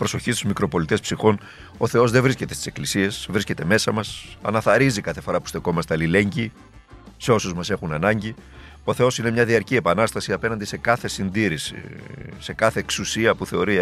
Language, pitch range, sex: Greek, 100-130 Hz, male